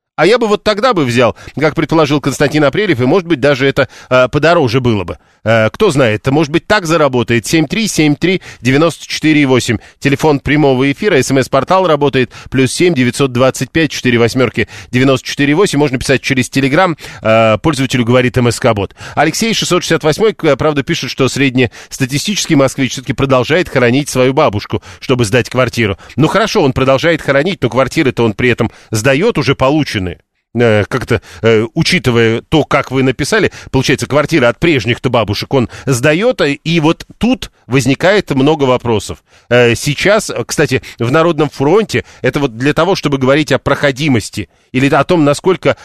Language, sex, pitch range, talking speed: Russian, male, 120-155 Hz, 140 wpm